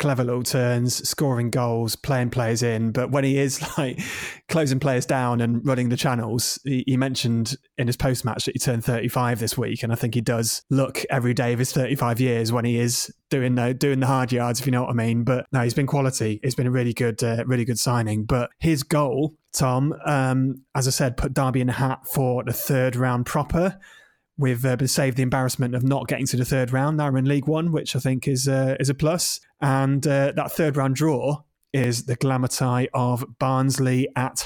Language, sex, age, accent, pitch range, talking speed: English, male, 20-39, British, 125-140 Hz, 230 wpm